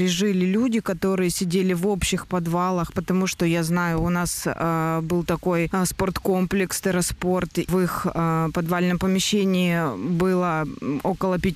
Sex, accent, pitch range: female, native, 170-190 Hz